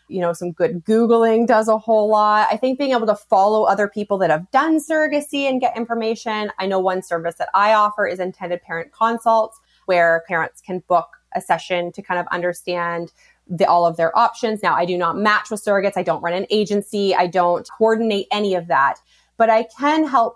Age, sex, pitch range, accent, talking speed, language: 20-39, female, 180-235 Hz, American, 210 wpm, English